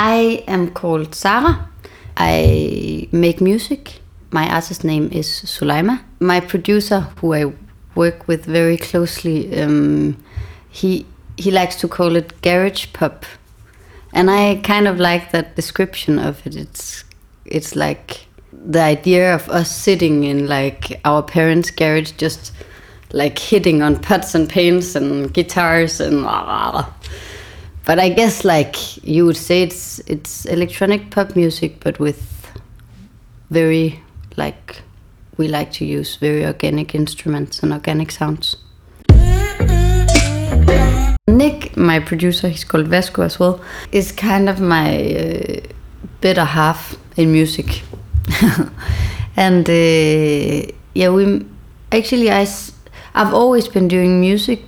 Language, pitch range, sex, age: English, 115-180 Hz, female, 30-49